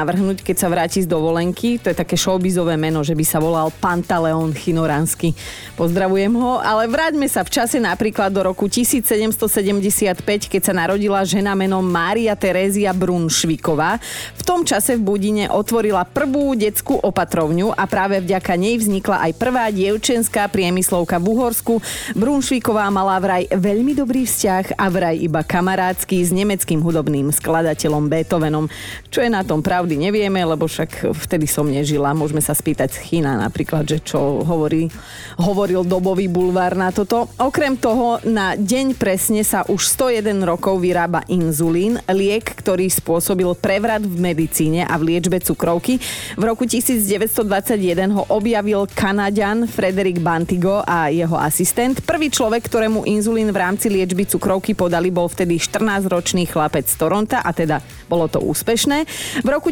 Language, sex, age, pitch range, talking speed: Slovak, female, 30-49, 170-215 Hz, 150 wpm